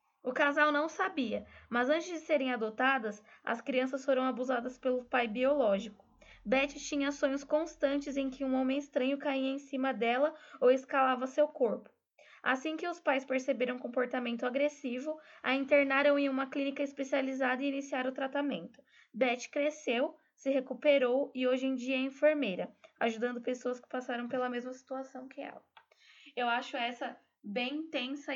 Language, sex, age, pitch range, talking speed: Portuguese, female, 10-29, 250-285 Hz, 155 wpm